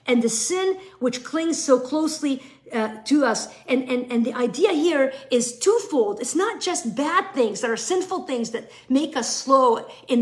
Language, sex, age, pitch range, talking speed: English, female, 50-69, 230-340 Hz, 190 wpm